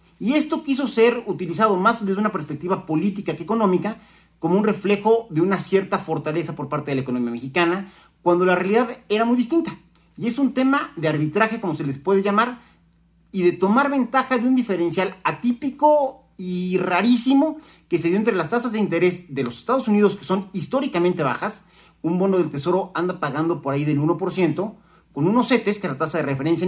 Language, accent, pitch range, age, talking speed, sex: Spanish, Mexican, 155-220 Hz, 40-59, 195 wpm, male